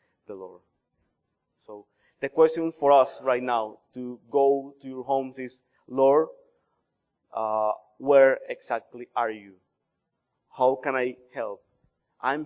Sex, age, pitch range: male, 30-49, 120-145 Hz